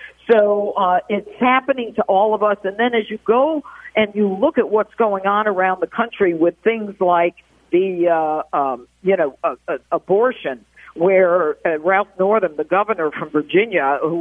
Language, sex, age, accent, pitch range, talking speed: English, female, 50-69, American, 175-245 Hz, 175 wpm